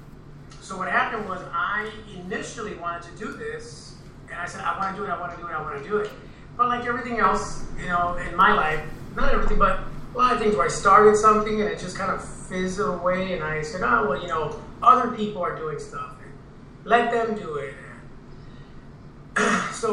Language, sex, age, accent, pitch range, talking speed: English, male, 30-49, American, 165-210 Hz, 210 wpm